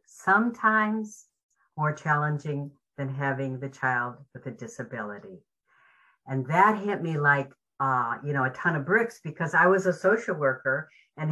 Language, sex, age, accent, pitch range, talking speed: English, female, 60-79, American, 140-185 Hz, 155 wpm